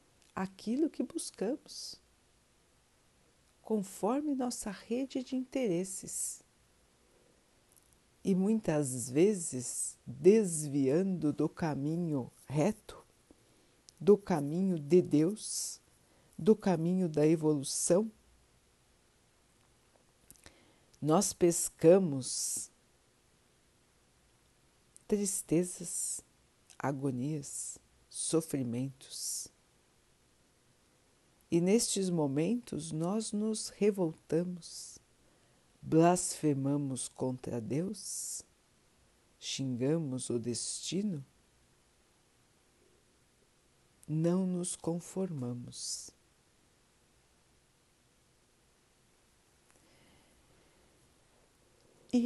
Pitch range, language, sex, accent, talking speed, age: 130-195 Hz, Portuguese, female, Brazilian, 50 wpm, 60-79